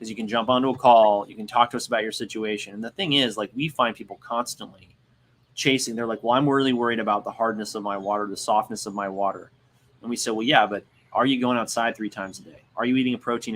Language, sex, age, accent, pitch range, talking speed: English, male, 20-39, American, 105-125 Hz, 270 wpm